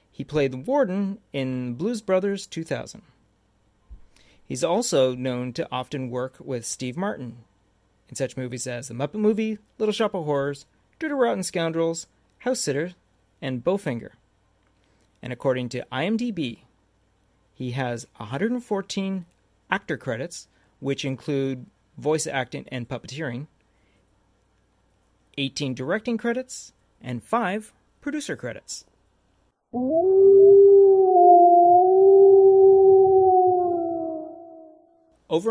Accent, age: American, 40-59